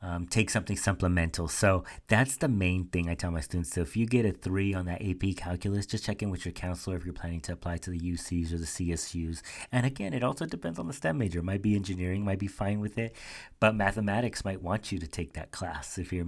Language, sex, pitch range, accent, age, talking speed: English, male, 85-100 Hz, American, 30-49, 250 wpm